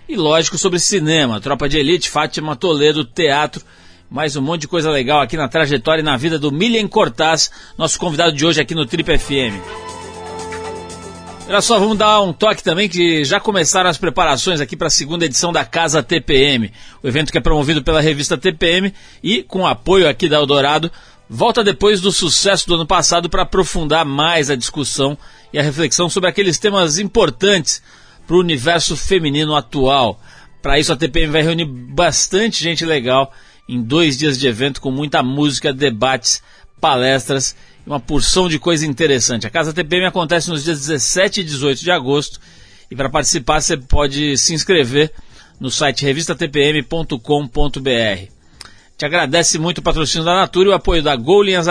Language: Portuguese